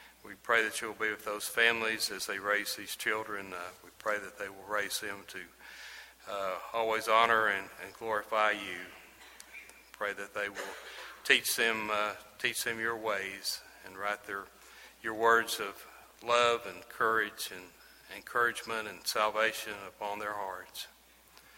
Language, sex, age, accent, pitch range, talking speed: English, male, 40-59, American, 100-115 Hz, 160 wpm